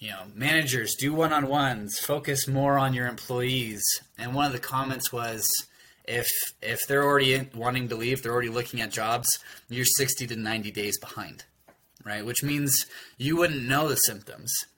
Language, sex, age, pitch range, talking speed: English, male, 20-39, 115-135 Hz, 175 wpm